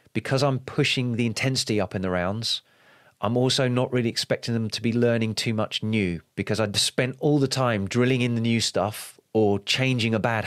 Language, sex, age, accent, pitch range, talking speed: English, male, 30-49, British, 105-125 Hz, 205 wpm